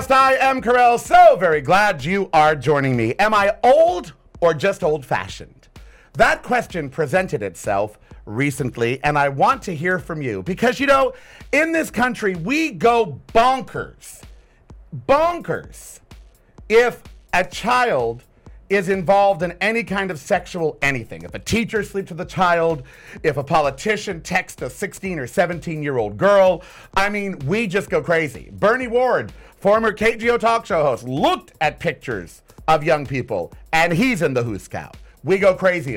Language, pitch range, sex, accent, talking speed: English, 160-235 Hz, male, American, 155 wpm